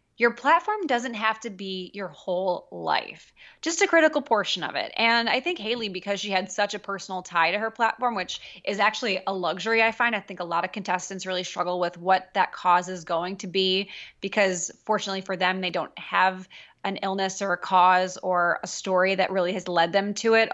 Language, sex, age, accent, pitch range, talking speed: English, female, 20-39, American, 185-230 Hz, 215 wpm